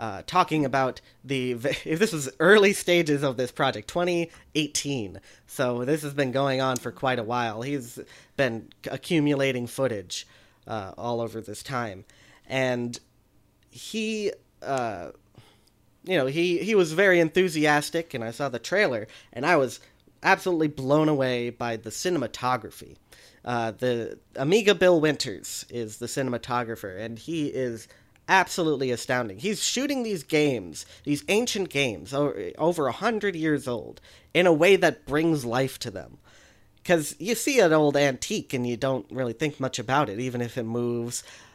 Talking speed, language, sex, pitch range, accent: 155 wpm, English, male, 120-160 Hz, American